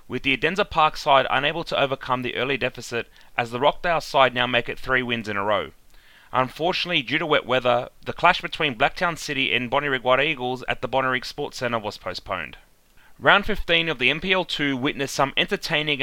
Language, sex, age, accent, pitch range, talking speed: English, male, 30-49, Australian, 125-155 Hz, 195 wpm